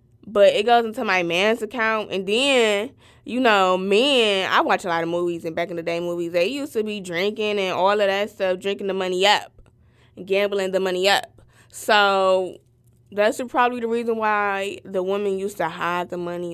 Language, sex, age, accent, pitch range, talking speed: English, female, 20-39, American, 175-225 Hz, 190 wpm